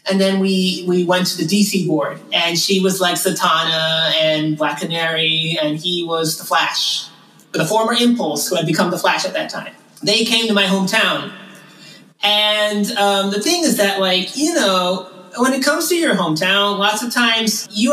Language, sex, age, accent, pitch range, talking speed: English, male, 30-49, American, 180-225 Hz, 195 wpm